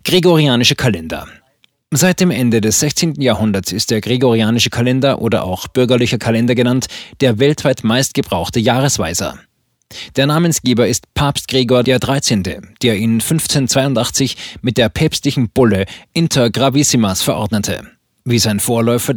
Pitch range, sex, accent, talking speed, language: 115-145 Hz, male, German, 125 wpm, German